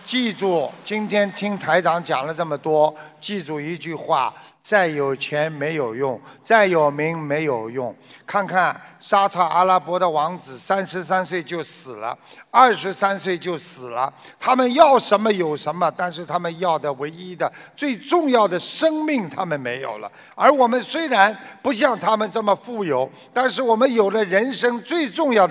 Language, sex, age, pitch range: Chinese, male, 50-69, 165-235 Hz